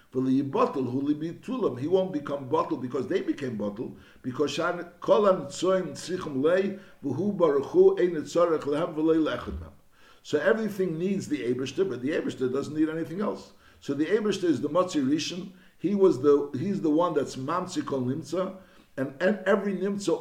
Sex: male